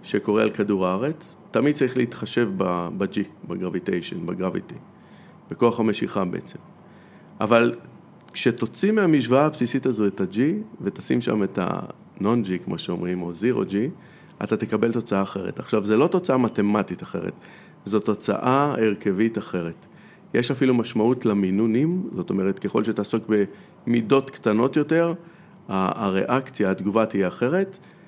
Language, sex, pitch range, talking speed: Hebrew, male, 105-140 Hz, 125 wpm